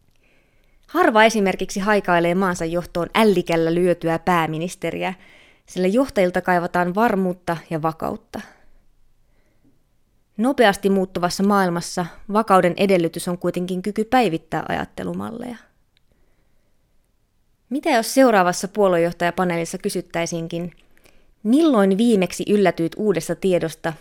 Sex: female